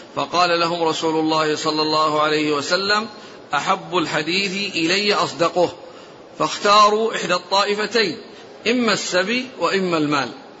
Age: 50-69